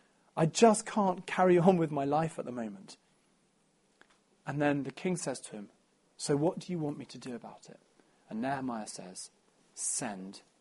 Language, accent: English, British